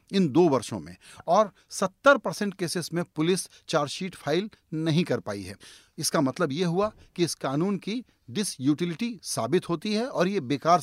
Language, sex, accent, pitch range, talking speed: Hindi, male, native, 140-195 Hz, 175 wpm